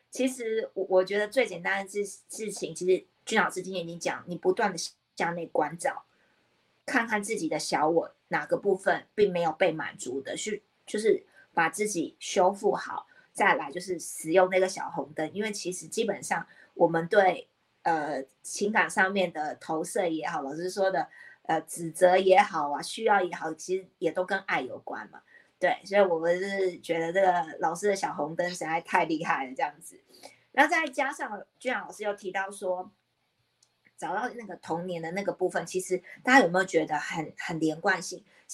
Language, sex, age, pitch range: Chinese, female, 30-49, 170-210 Hz